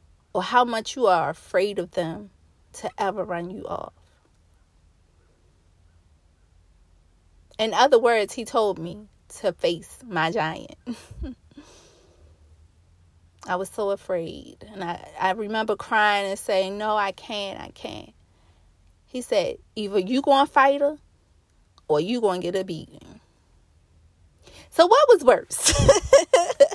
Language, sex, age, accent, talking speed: English, female, 30-49, American, 130 wpm